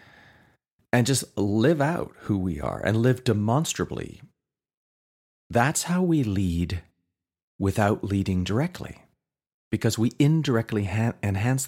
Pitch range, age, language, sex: 80-115 Hz, 40-59, English, male